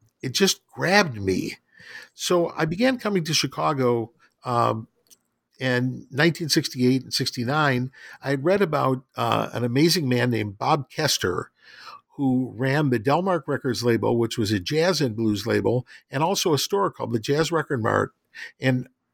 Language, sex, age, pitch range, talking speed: English, male, 50-69, 120-150 Hz, 155 wpm